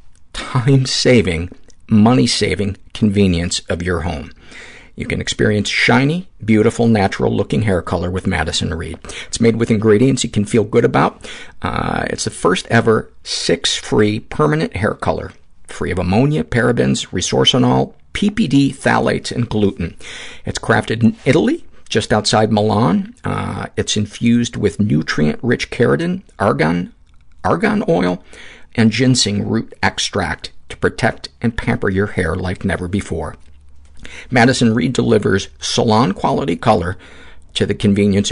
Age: 50-69